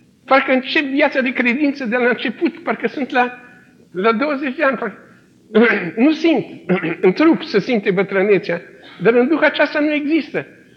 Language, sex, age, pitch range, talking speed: Romanian, male, 50-69, 160-245 Hz, 160 wpm